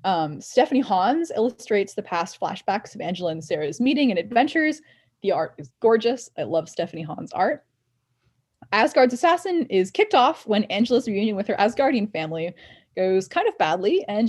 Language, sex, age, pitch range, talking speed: English, female, 10-29, 180-255 Hz, 170 wpm